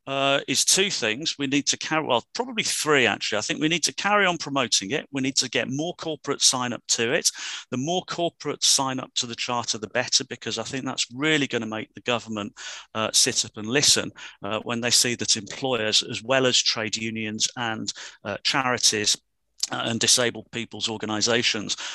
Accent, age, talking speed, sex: British, 40-59, 200 wpm, male